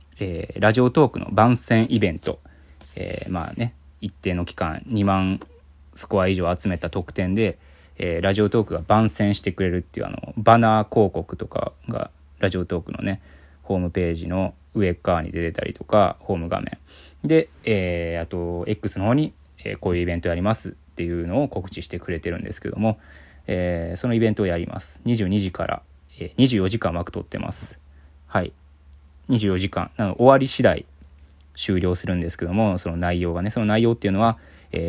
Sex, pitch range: male, 75-110 Hz